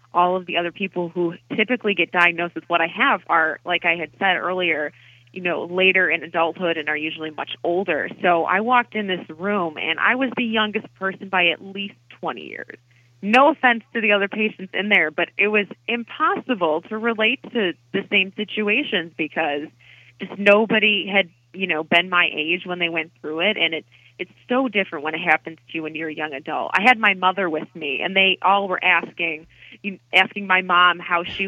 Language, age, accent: English, 20-39, American